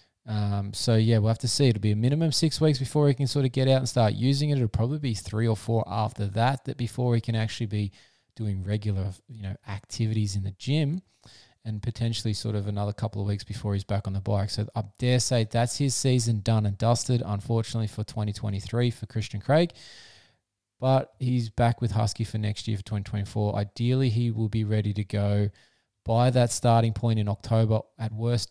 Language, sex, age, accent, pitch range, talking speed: English, male, 20-39, Australian, 105-130 Hz, 215 wpm